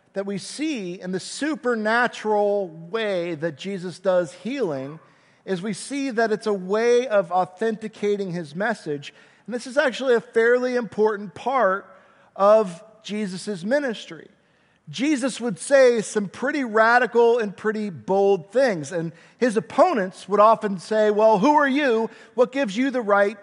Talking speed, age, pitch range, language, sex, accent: 150 wpm, 50-69, 185-235 Hz, English, male, American